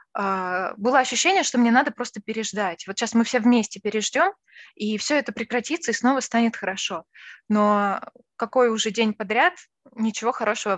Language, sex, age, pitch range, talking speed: Russian, female, 20-39, 195-255 Hz, 155 wpm